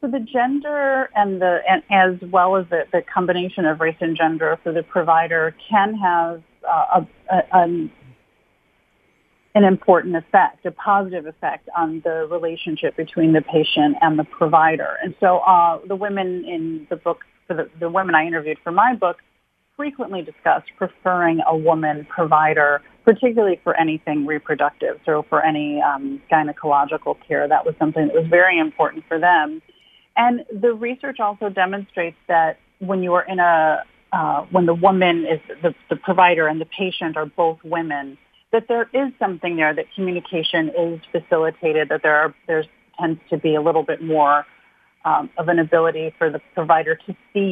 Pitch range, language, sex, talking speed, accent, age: 160-185 Hz, English, female, 170 wpm, American, 40-59